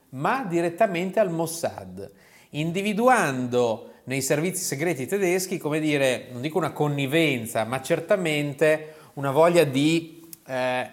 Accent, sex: native, male